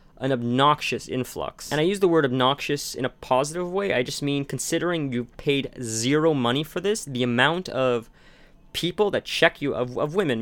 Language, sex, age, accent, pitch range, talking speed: English, male, 30-49, American, 125-150 Hz, 190 wpm